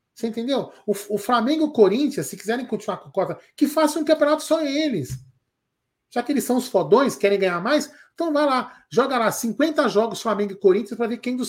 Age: 40-59